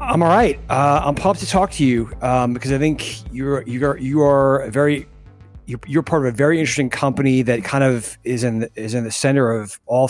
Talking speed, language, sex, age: 245 wpm, English, male, 30-49